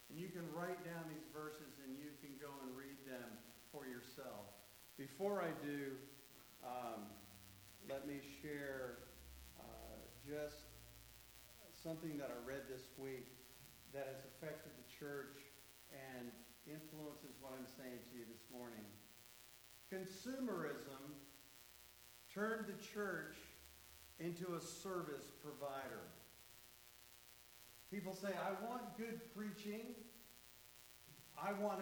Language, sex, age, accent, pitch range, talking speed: English, male, 50-69, American, 120-190 Hz, 115 wpm